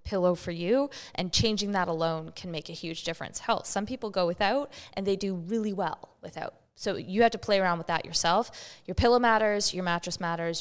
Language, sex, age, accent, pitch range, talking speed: English, female, 20-39, American, 165-185 Hz, 215 wpm